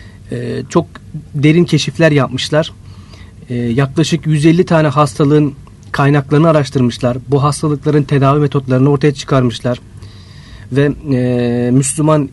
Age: 40-59